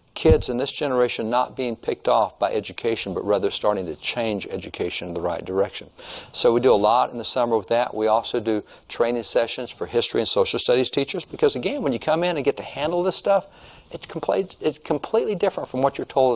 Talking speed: 220 wpm